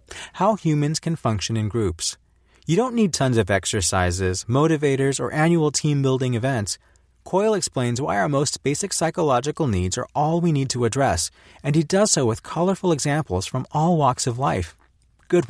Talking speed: 170 wpm